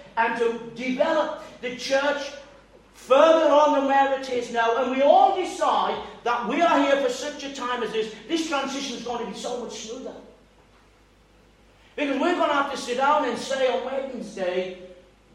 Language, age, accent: English, 50-69, British